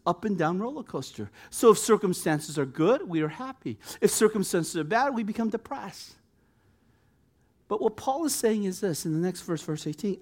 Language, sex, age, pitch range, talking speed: English, male, 50-69, 120-190 Hz, 195 wpm